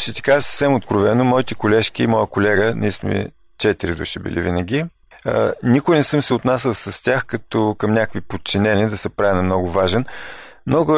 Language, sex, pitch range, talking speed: Bulgarian, male, 105-125 Hz, 185 wpm